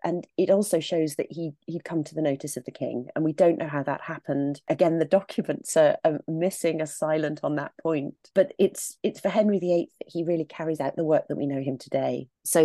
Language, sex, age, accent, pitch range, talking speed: English, female, 30-49, British, 150-180 Hz, 245 wpm